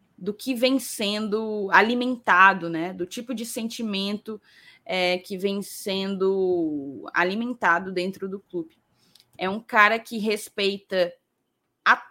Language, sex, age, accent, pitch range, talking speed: Portuguese, female, 20-39, Brazilian, 190-245 Hz, 120 wpm